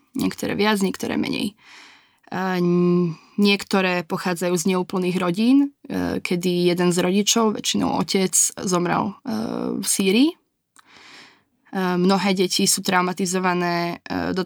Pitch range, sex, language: 180-210 Hz, female, Slovak